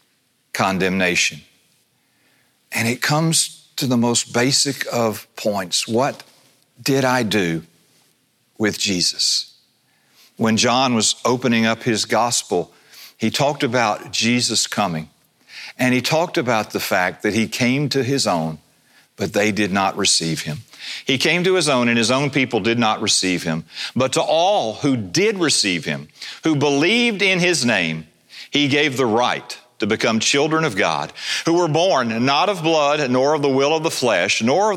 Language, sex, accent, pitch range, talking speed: English, male, American, 100-130 Hz, 165 wpm